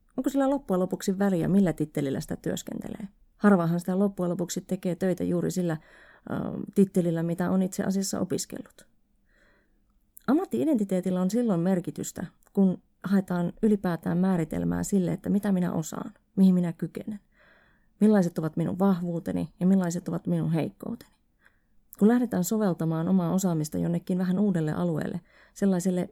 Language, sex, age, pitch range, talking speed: Finnish, female, 30-49, 170-200 Hz, 135 wpm